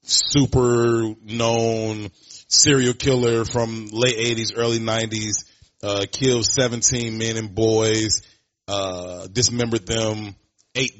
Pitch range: 95-115 Hz